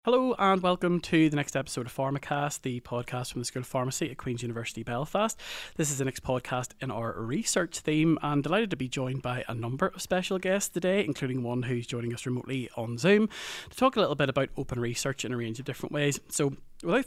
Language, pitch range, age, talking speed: English, 125-165 Hz, 30-49, 230 wpm